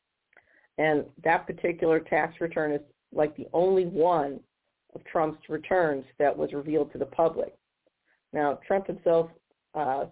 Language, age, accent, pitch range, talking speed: English, 50-69, American, 155-185 Hz, 135 wpm